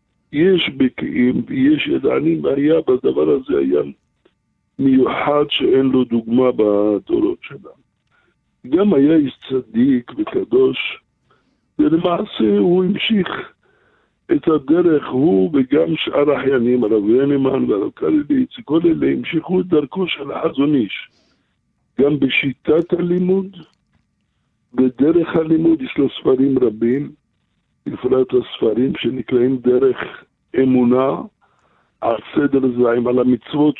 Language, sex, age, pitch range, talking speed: English, male, 60-79, 130-185 Hz, 100 wpm